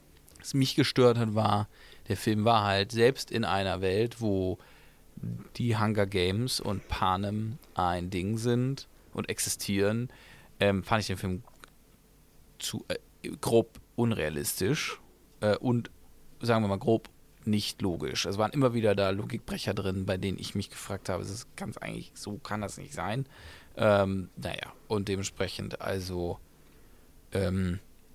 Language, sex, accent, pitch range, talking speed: English, male, German, 95-120 Hz, 145 wpm